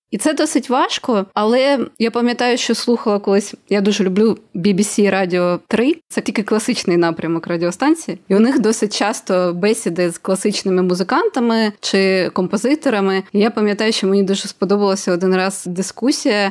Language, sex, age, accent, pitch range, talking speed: Ukrainian, female, 20-39, native, 185-225 Hz, 155 wpm